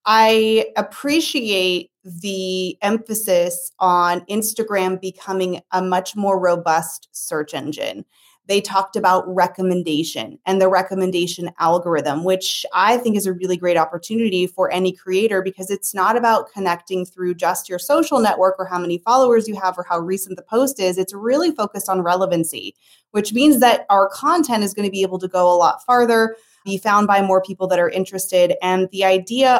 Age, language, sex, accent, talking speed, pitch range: 20-39, English, female, American, 170 wpm, 185-230 Hz